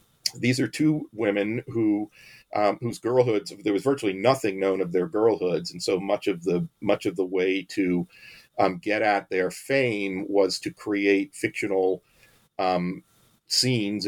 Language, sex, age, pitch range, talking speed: English, male, 40-59, 90-105 Hz, 160 wpm